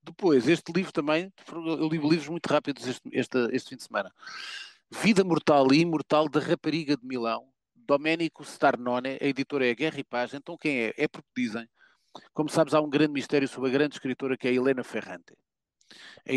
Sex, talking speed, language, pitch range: male, 200 wpm, Portuguese, 125-160 Hz